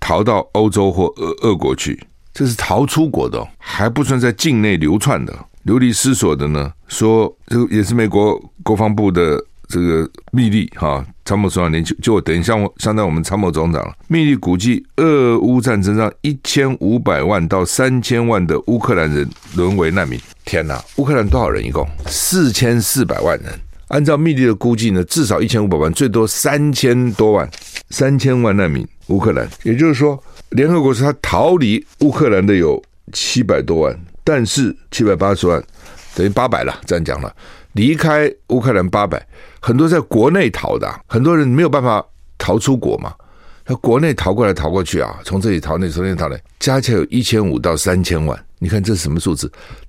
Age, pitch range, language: 60-79, 90-125 Hz, Chinese